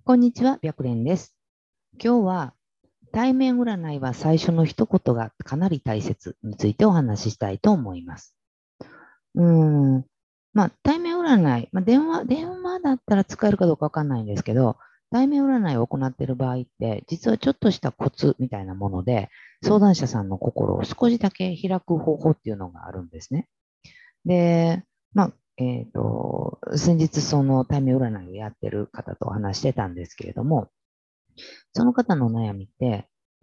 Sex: female